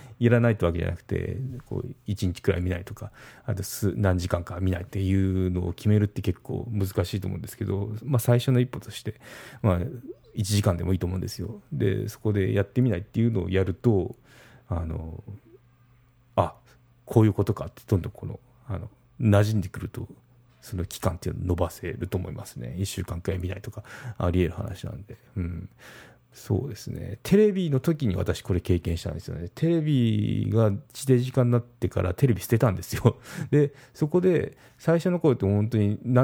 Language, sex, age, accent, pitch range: Japanese, male, 30-49, native, 95-125 Hz